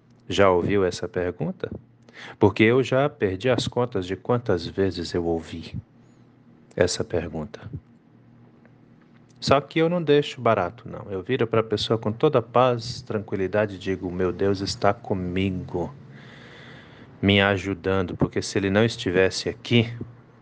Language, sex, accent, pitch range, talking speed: Portuguese, male, Brazilian, 95-120 Hz, 140 wpm